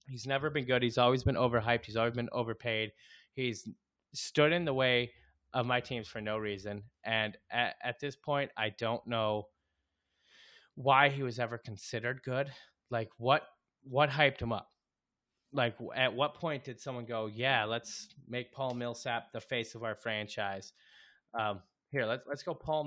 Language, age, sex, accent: English, 20-39, male, American